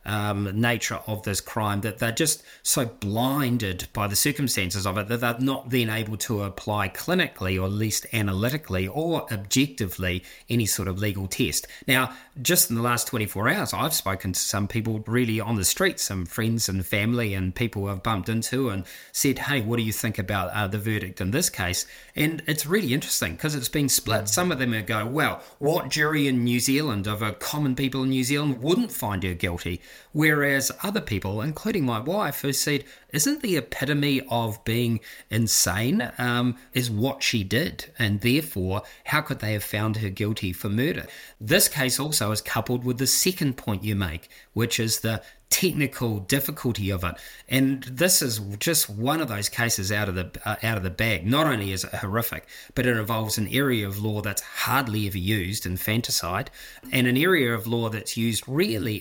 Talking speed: 195 wpm